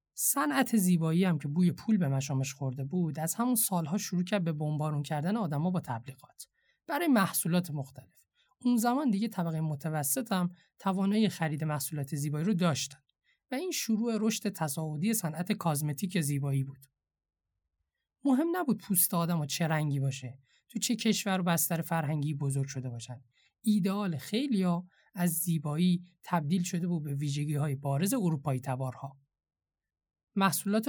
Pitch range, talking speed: 145-215 Hz, 150 wpm